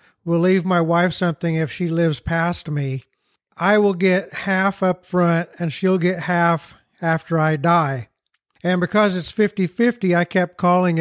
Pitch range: 160-185 Hz